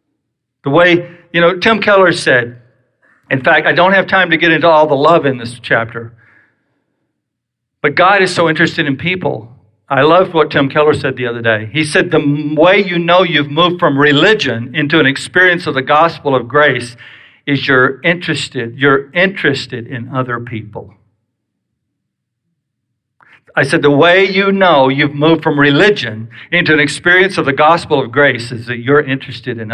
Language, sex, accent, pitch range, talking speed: English, male, American, 125-185 Hz, 175 wpm